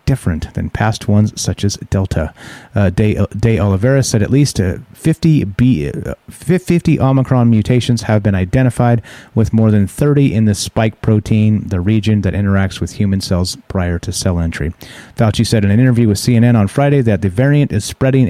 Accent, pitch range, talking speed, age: American, 100-130 Hz, 185 wpm, 30-49